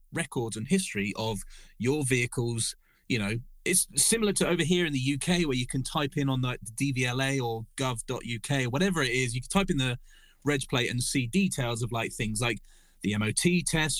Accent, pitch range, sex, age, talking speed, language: British, 120-155 Hz, male, 30-49, 195 wpm, English